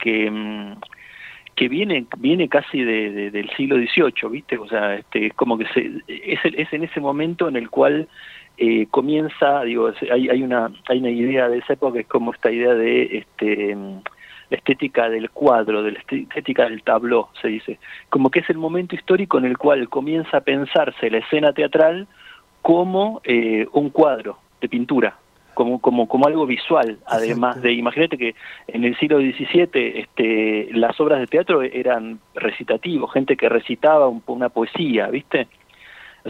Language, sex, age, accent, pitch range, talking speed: Spanish, male, 40-59, Argentinian, 115-155 Hz, 170 wpm